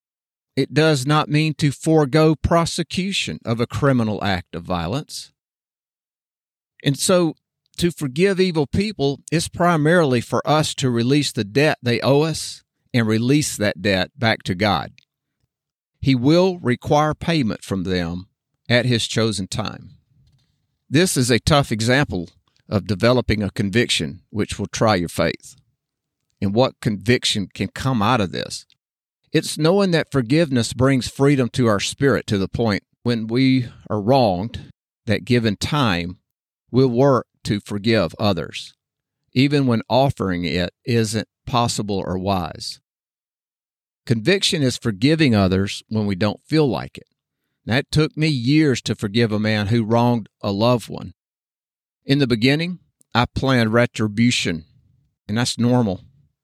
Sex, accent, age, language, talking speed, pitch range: male, American, 50-69, English, 140 wpm, 110-140 Hz